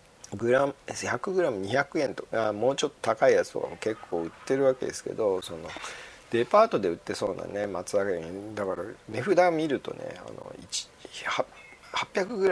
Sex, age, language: male, 40-59, Japanese